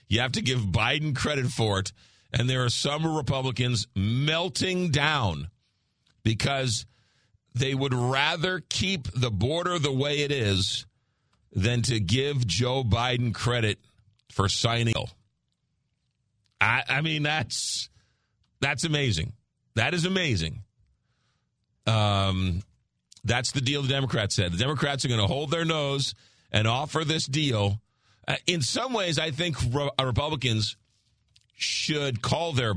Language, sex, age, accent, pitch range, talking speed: English, male, 40-59, American, 110-145 Hz, 130 wpm